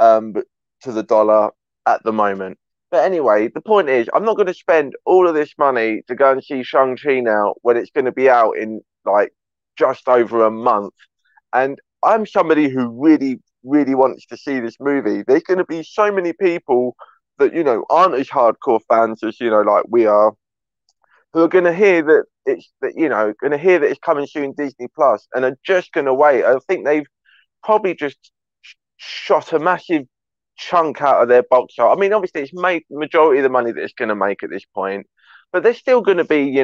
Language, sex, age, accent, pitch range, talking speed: English, male, 20-39, British, 115-170 Hz, 220 wpm